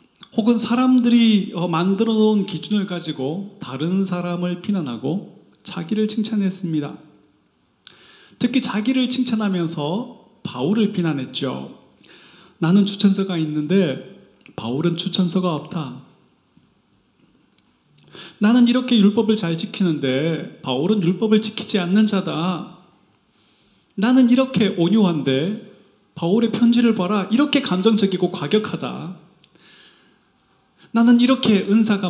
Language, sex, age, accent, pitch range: Korean, male, 30-49, native, 165-220 Hz